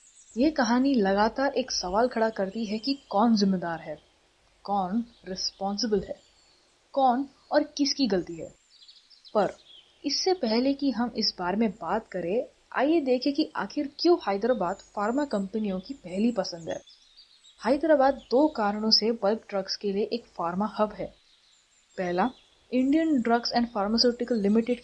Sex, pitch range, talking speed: female, 195-250 Hz, 145 wpm